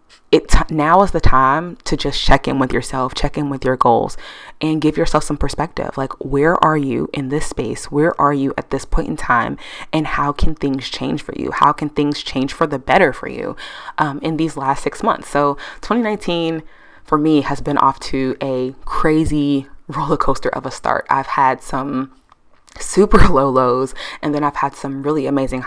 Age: 20-39